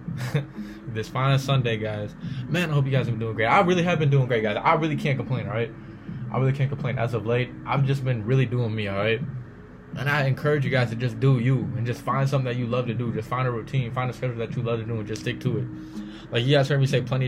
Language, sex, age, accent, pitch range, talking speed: English, male, 20-39, American, 115-140 Hz, 280 wpm